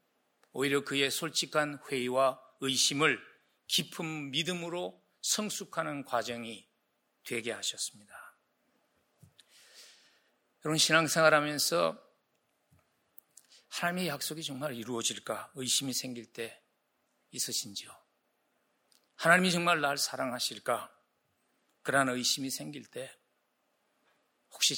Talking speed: 75 wpm